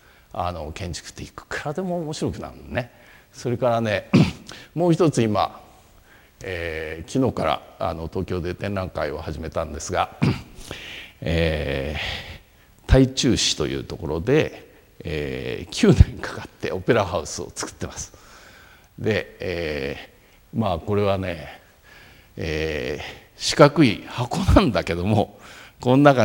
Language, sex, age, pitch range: Japanese, male, 50-69, 85-120 Hz